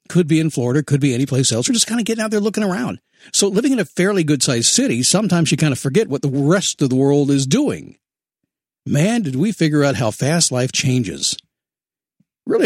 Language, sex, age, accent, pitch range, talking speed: English, male, 50-69, American, 130-185 Hz, 230 wpm